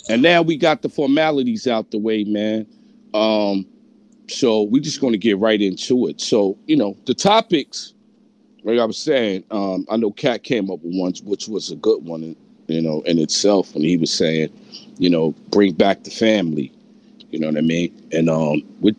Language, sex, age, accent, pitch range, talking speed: English, male, 50-69, American, 90-125 Hz, 200 wpm